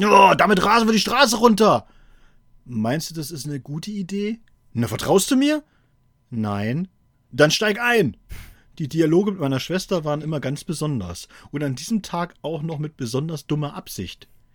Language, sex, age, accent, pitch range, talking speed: German, male, 40-59, German, 125-175 Hz, 165 wpm